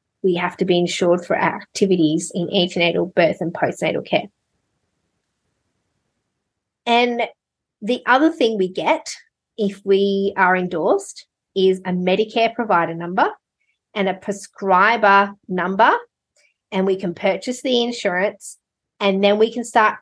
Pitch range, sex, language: 185-235 Hz, female, English